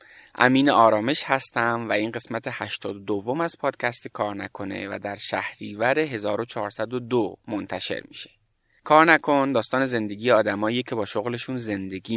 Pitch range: 110-140 Hz